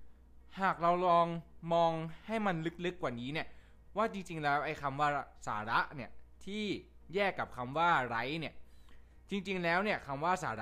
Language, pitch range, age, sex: Thai, 120-180 Hz, 20-39, male